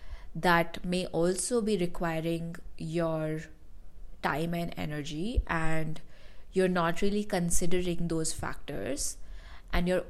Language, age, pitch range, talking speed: English, 20-39, 155-185 Hz, 105 wpm